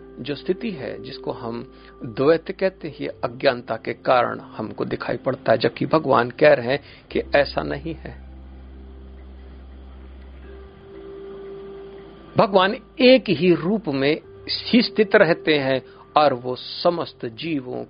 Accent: native